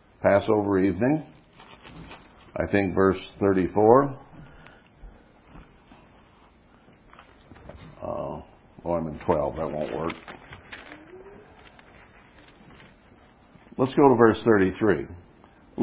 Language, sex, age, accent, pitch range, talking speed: English, male, 60-79, American, 105-170 Hz, 70 wpm